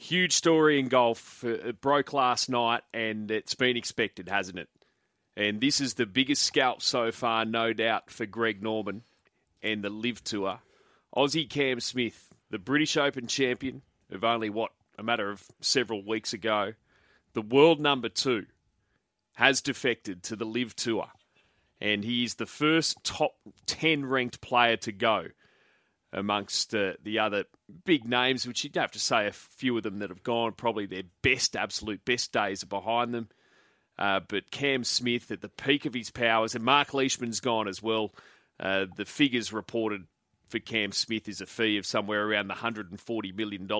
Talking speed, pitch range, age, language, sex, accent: 175 wpm, 105-125 Hz, 30-49, English, male, Australian